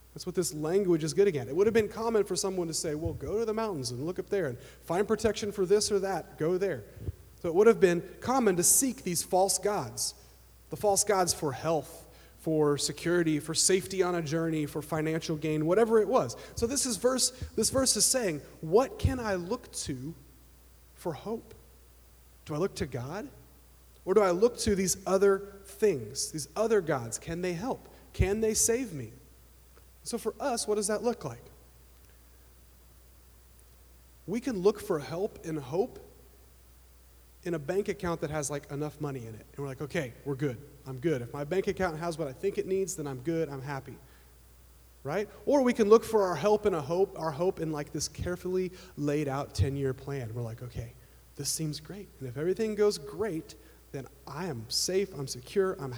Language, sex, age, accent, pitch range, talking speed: English, male, 30-49, American, 125-195 Hz, 200 wpm